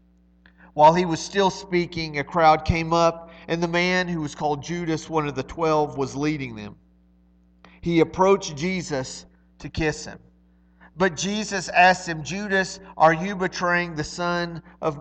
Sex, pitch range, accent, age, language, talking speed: male, 145-190 Hz, American, 40-59, English, 160 wpm